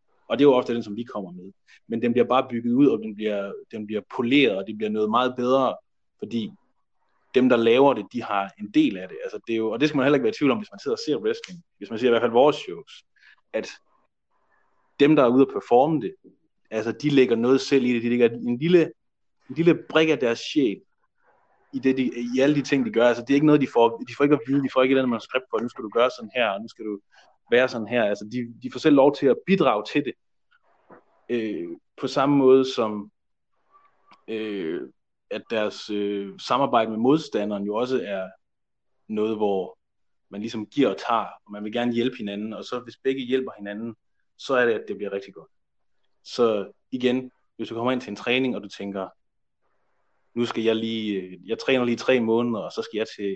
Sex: male